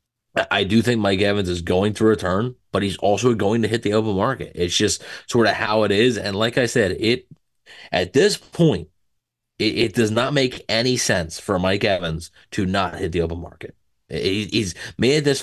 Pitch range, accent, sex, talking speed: 95-120 Hz, American, male, 210 wpm